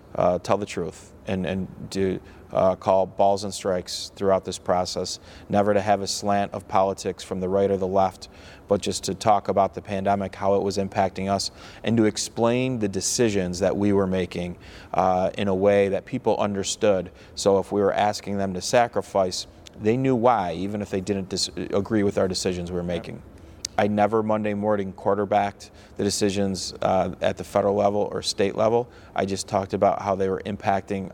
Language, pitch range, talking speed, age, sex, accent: English, 95-105 Hz, 195 wpm, 30-49, male, American